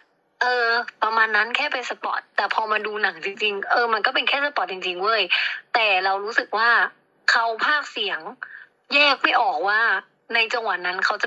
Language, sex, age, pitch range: Thai, female, 20-39, 205-270 Hz